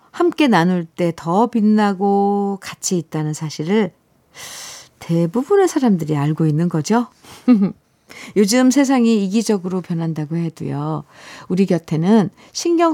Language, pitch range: Korean, 160-225 Hz